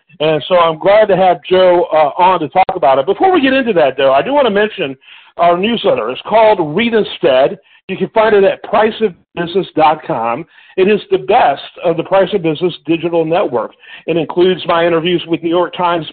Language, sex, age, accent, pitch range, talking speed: English, male, 50-69, American, 165-205 Hz, 205 wpm